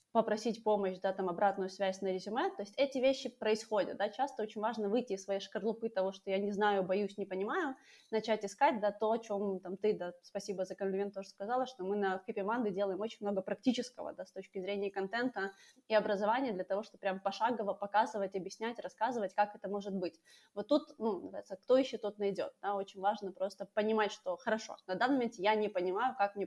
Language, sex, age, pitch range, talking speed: Ukrainian, female, 20-39, 195-225 Hz, 215 wpm